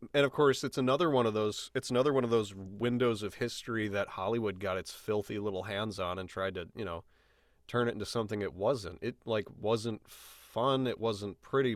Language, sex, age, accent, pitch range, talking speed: English, male, 30-49, American, 100-125 Hz, 215 wpm